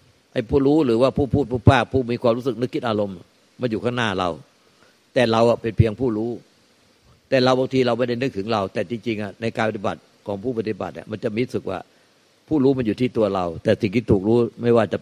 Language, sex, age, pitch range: Thai, male, 60-79, 110-135 Hz